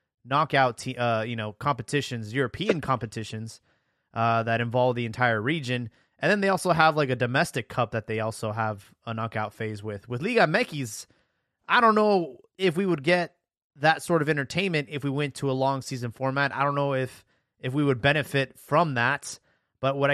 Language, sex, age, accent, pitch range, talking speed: English, male, 20-39, American, 120-145 Hz, 195 wpm